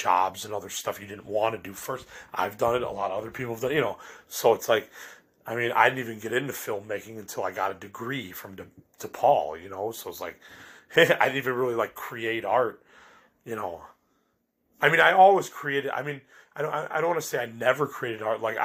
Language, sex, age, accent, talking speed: English, male, 30-49, American, 240 wpm